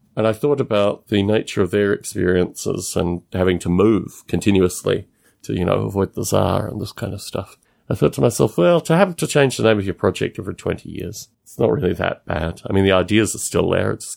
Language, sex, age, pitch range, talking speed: English, male, 40-59, 95-130 Hz, 235 wpm